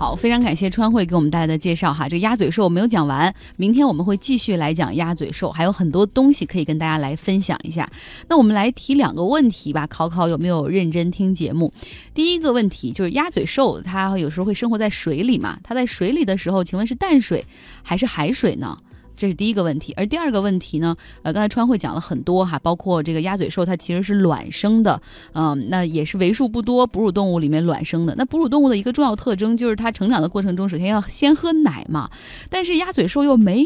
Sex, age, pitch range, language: female, 20-39, 165-235 Hz, Chinese